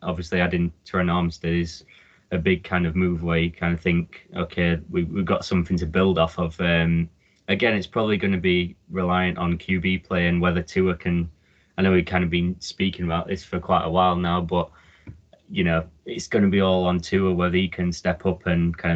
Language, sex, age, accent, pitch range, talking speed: English, male, 20-39, British, 85-95 Hz, 220 wpm